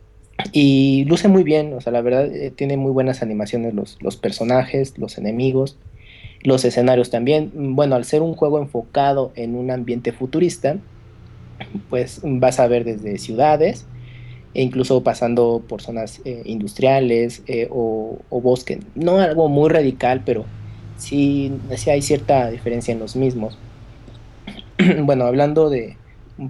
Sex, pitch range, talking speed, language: male, 115-140 Hz, 145 wpm, Spanish